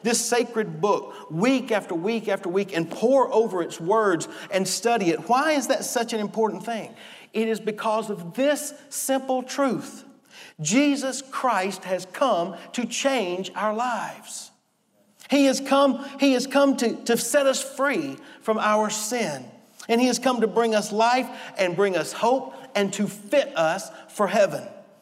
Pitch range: 165-245 Hz